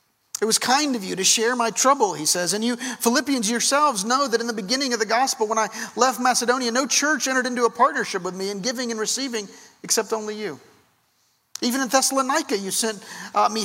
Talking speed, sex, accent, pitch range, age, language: 210 wpm, male, American, 175-230 Hz, 50-69, English